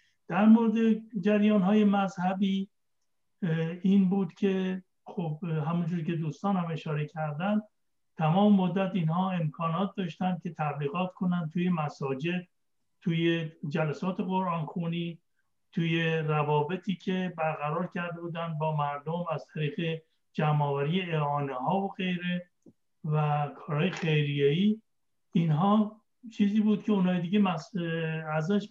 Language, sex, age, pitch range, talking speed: Persian, male, 60-79, 155-195 Hz, 105 wpm